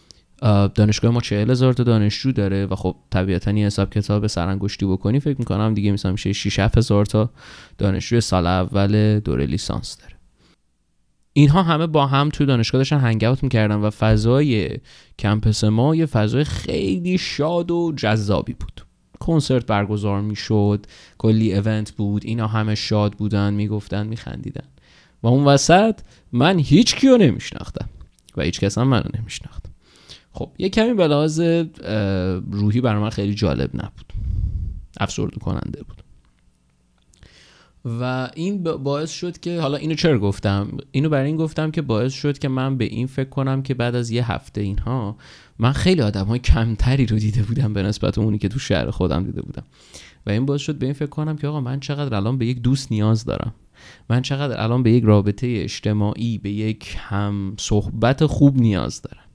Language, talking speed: Persian, 160 wpm